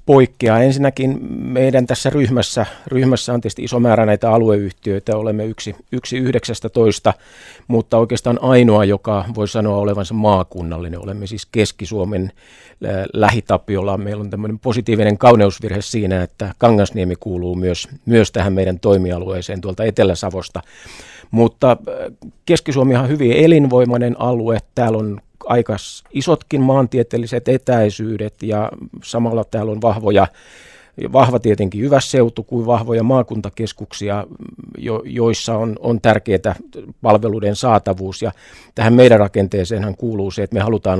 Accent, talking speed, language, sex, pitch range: native, 120 wpm, Finnish, male, 100-120 Hz